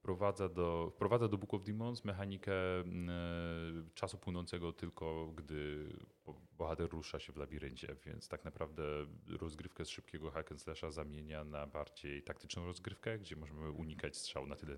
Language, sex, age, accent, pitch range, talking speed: Polish, male, 30-49, native, 75-95 Hz, 140 wpm